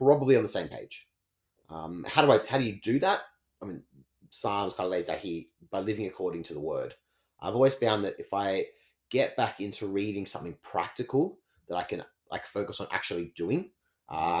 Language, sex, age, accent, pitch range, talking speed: English, male, 30-49, Australian, 90-135 Hz, 205 wpm